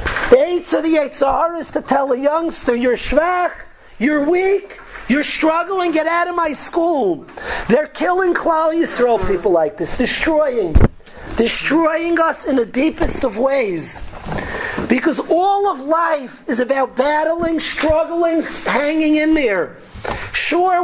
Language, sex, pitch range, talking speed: English, male, 270-335 Hz, 140 wpm